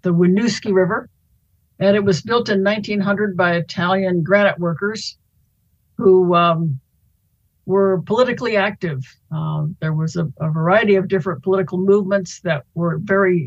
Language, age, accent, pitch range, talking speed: English, 60-79, American, 160-195 Hz, 140 wpm